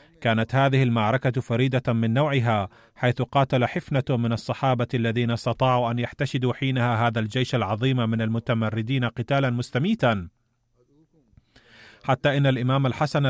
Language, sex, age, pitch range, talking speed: Arabic, male, 30-49, 120-135 Hz, 120 wpm